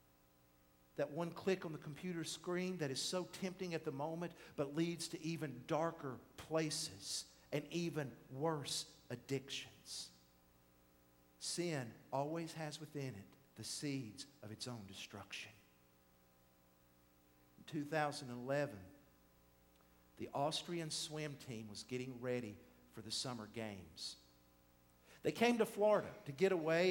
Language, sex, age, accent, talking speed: English, male, 50-69, American, 125 wpm